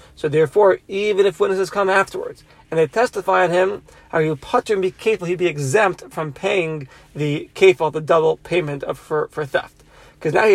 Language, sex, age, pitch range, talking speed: English, male, 30-49, 155-205 Hz, 200 wpm